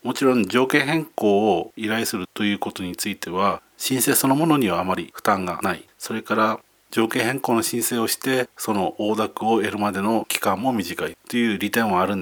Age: 40-59